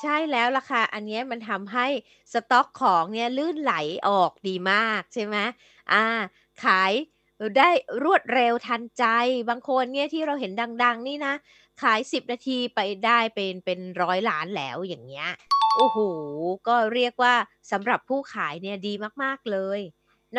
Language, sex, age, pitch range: Thai, female, 20-39, 195-260 Hz